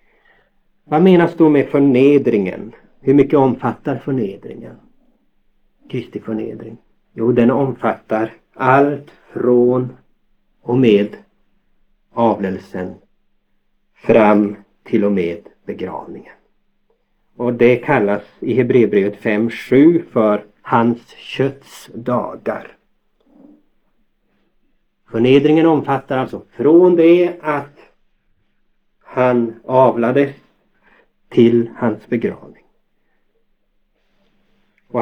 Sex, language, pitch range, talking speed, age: male, Swedish, 120-160 Hz, 75 wpm, 60-79